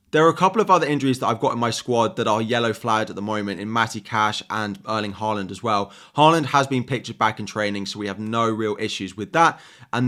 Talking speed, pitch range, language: 260 wpm, 105-130 Hz, English